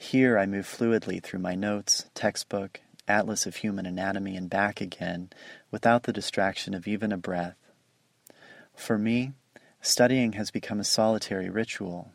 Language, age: English, 30-49